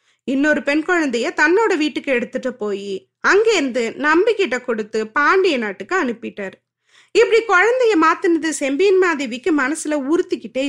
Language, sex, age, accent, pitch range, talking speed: Tamil, female, 20-39, native, 240-360 Hz, 110 wpm